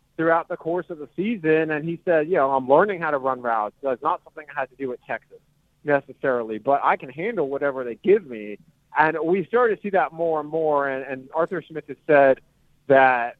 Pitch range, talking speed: 140-175 Hz, 235 wpm